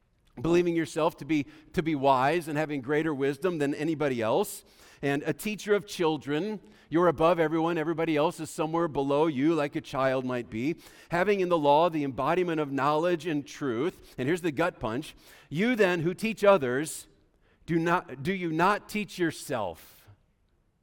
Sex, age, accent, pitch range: male, 50-69, American, 145-185 Hz